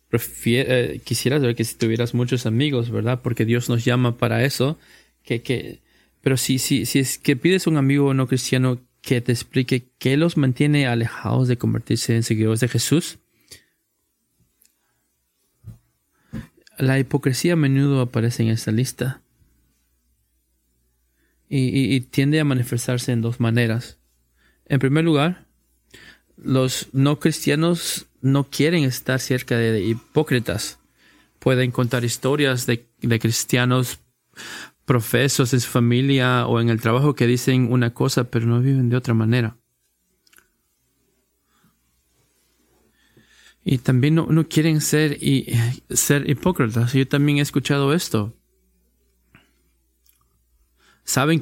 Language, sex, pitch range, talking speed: Spanish, male, 115-140 Hz, 130 wpm